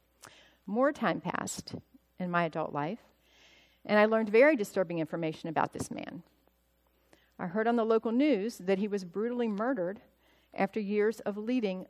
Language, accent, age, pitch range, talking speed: English, American, 50-69, 175-225 Hz, 155 wpm